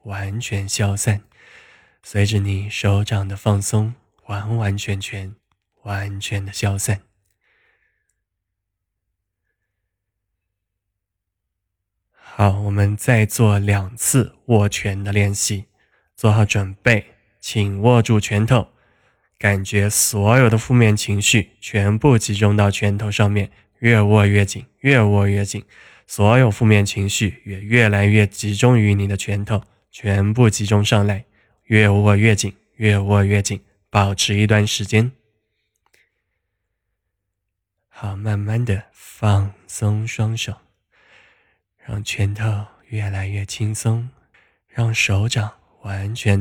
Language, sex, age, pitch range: Chinese, male, 20-39, 100-110 Hz